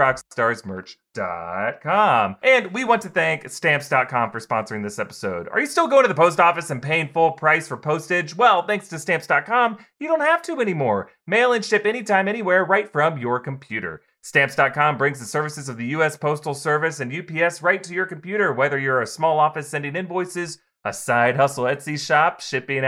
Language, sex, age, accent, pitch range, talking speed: English, male, 30-49, American, 135-175 Hz, 185 wpm